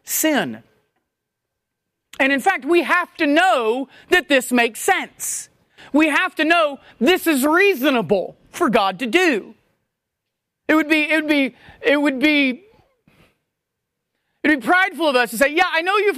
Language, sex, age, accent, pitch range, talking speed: English, male, 40-59, American, 215-305 Hz, 165 wpm